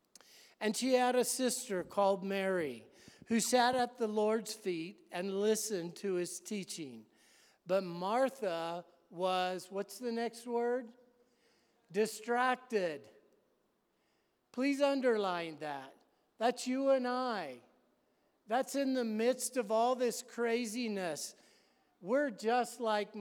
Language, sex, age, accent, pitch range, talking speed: English, male, 50-69, American, 190-250 Hz, 115 wpm